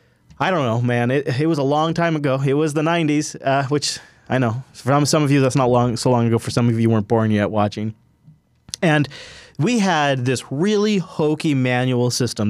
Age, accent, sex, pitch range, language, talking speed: 20-39, American, male, 120-160 Hz, English, 215 wpm